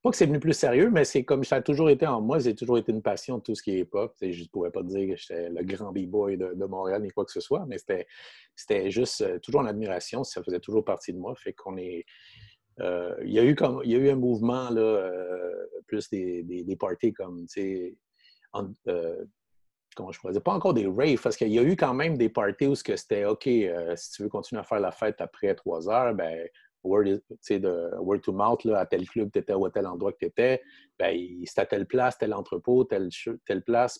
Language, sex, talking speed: French, male, 230 wpm